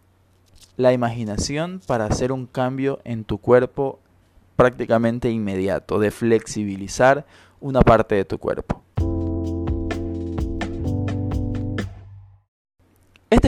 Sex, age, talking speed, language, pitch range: male, 20-39, 85 wpm, Spanish, 95-150 Hz